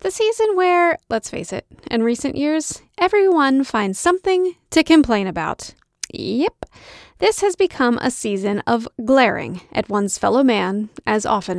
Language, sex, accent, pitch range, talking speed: English, female, American, 215-290 Hz, 150 wpm